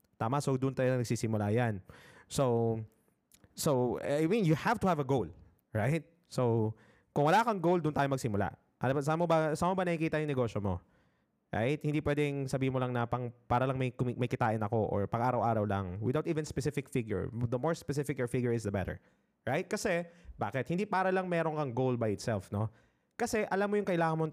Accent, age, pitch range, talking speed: native, 20-39, 115-165 Hz, 195 wpm